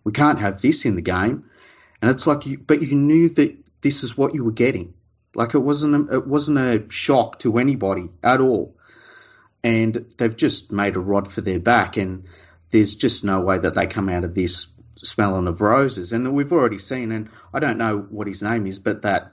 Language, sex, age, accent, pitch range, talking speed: English, male, 30-49, Australian, 95-115 Hz, 215 wpm